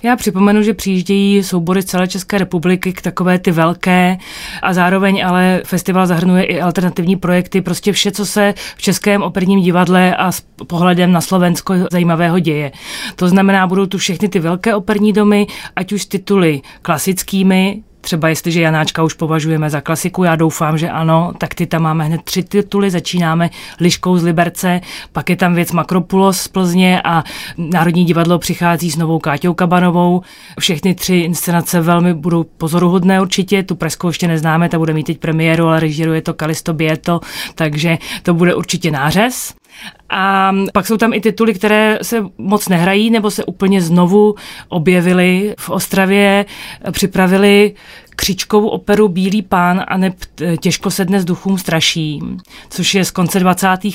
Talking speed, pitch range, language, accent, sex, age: 160 wpm, 170-195 Hz, Czech, native, female, 30-49